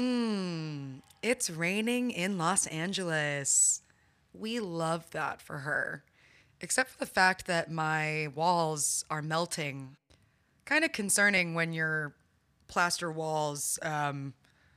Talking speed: 115 wpm